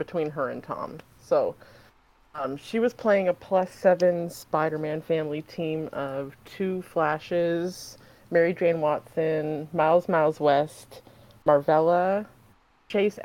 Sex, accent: female, American